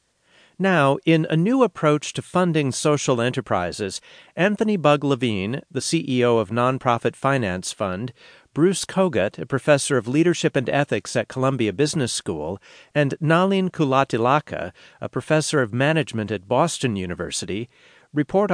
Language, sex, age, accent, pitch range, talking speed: English, male, 50-69, American, 115-150 Hz, 135 wpm